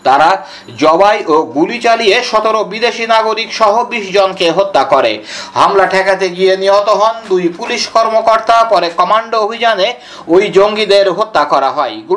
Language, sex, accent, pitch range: Bengali, male, native, 200-230 Hz